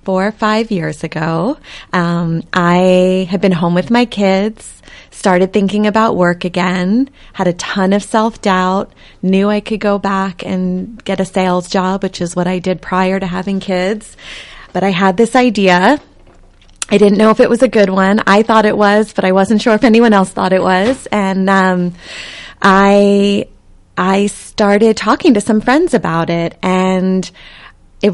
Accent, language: American, English